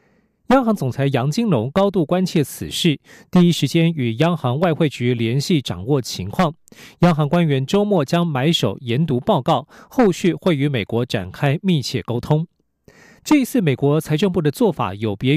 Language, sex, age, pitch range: Chinese, male, 40-59, 135-185 Hz